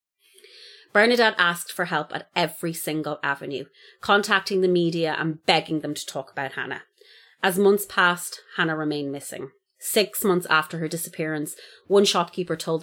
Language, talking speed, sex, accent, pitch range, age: English, 150 wpm, female, Irish, 155-195 Hz, 30-49